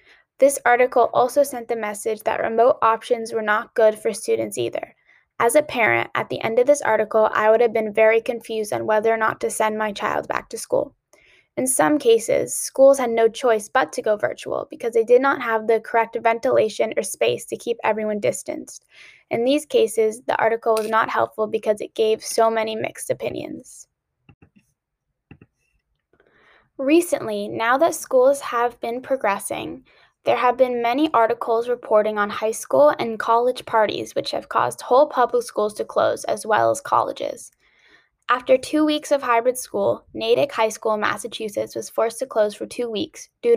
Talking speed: 180 wpm